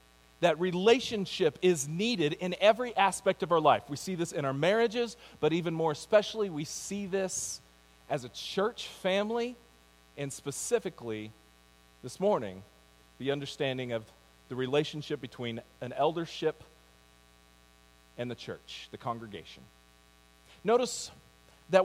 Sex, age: male, 40-59